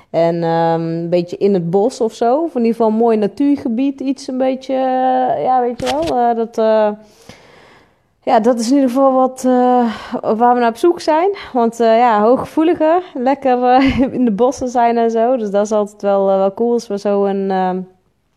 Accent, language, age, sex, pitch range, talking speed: Dutch, Dutch, 20-39, female, 175-220 Hz, 215 wpm